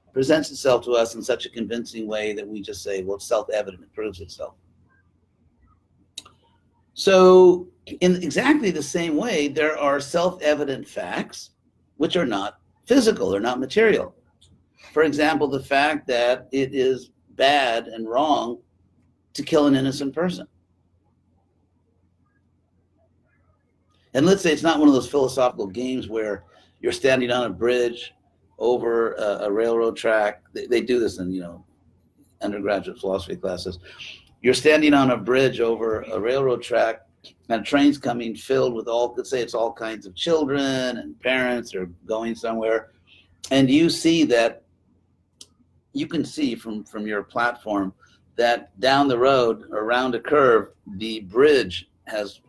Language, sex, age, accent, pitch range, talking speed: English, male, 50-69, American, 95-140 Hz, 150 wpm